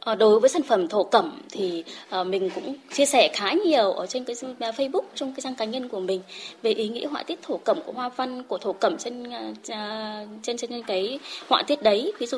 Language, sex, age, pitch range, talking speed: Vietnamese, female, 20-39, 200-285 Hz, 225 wpm